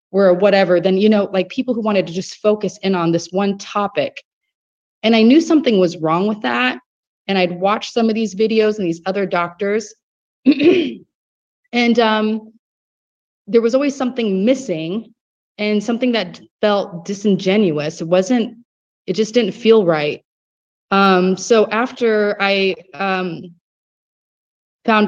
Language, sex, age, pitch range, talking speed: English, female, 30-49, 185-220 Hz, 145 wpm